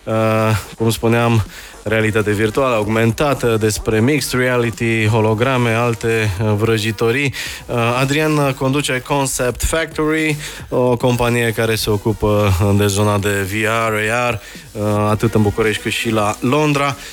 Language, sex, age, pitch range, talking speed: Romanian, male, 20-39, 110-130 Hz, 110 wpm